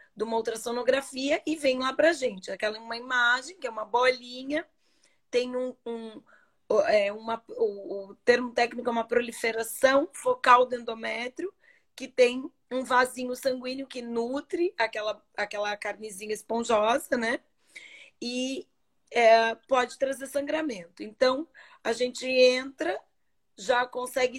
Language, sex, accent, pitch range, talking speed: Portuguese, female, Brazilian, 235-275 Hz, 130 wpm